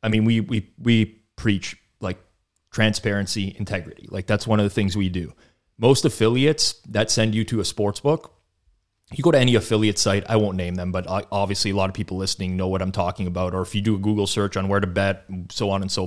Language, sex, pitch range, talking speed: English, male, 95-120 Hz, 235 wpm